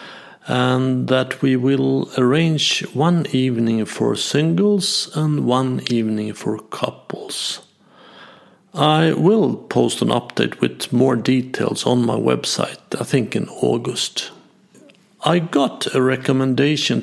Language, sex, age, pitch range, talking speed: Swedish, male, 50-69, 125-160 Hz, 115 wpm